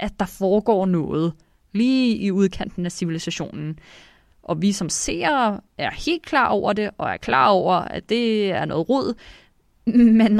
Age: 20-39